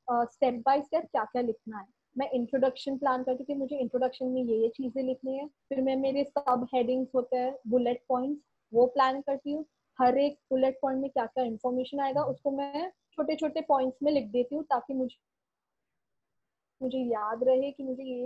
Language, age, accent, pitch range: Hindi, 20-39, native, 245-275 Hz